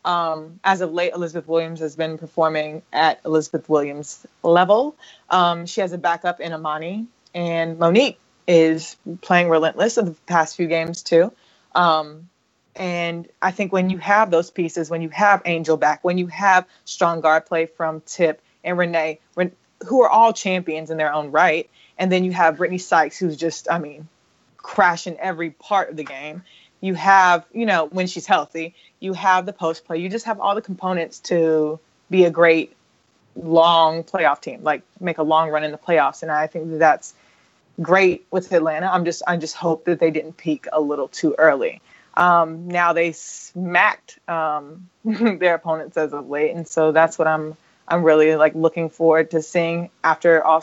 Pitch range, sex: 160-180 Hz, female